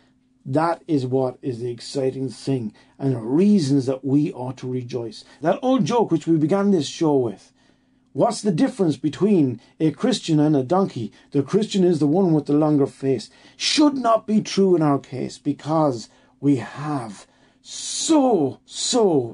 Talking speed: 170 wpm